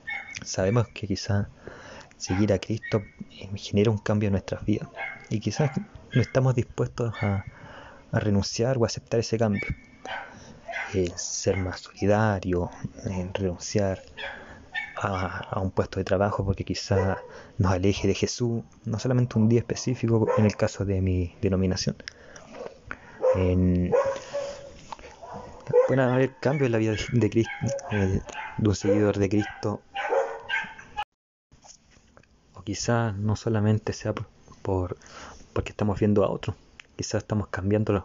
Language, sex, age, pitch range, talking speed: Spanish, male, 20-39, 95-115 Hz, 130 wpm